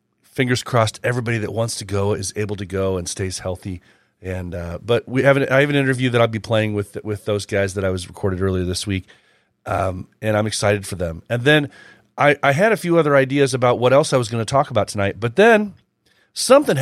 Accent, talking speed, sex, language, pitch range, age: American, 240 wpm, male, English, 95-125 Hz, 40-59